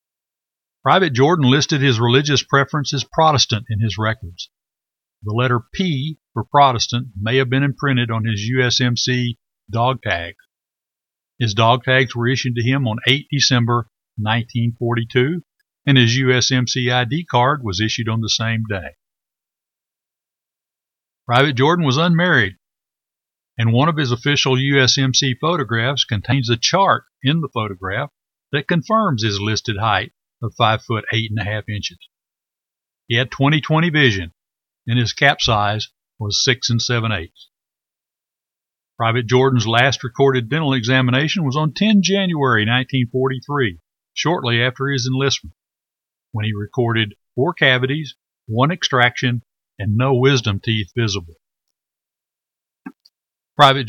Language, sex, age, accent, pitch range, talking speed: English, male, 50-69, American, 115-140 Hz, 130 wpm